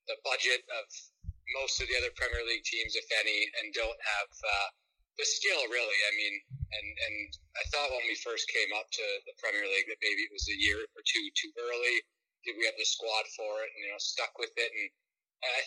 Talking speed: 225 wpm